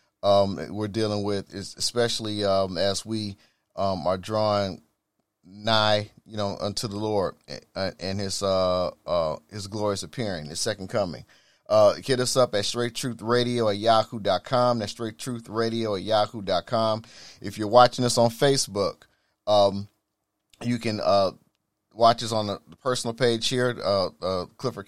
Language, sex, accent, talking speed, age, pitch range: English, male, American, 165 wpm, 30-49, 105-120 Hz